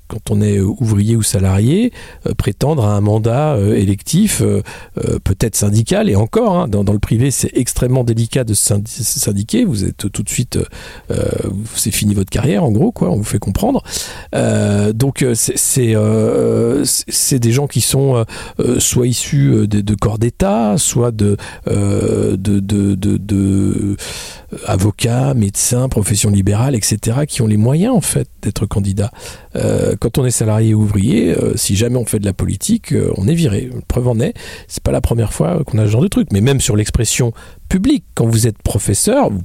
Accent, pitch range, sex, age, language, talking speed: French, 105-135 Hz, male, 50-69, French, 195 wpm